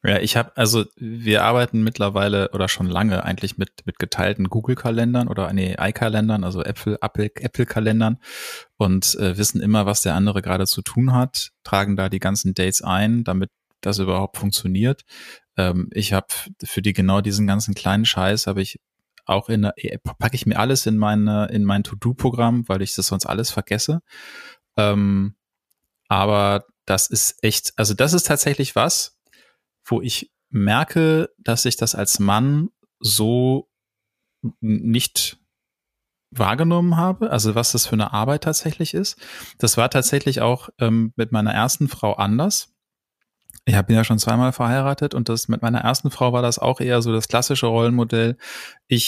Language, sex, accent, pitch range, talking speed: German, male, German, 100-120 Hz, 160 wpm